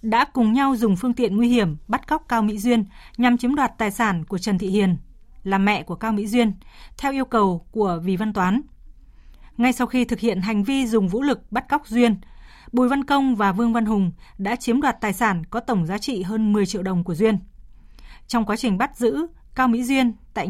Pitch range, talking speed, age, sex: 200-245 Hz, 230 wpm, 20-39, female